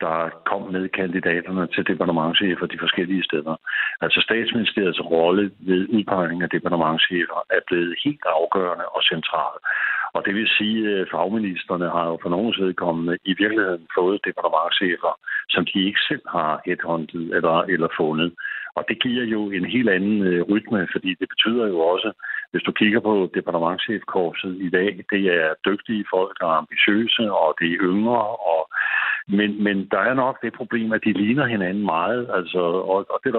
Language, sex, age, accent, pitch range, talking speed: Danish, male, 60-79, native, 90-110 Hz, 170 wpm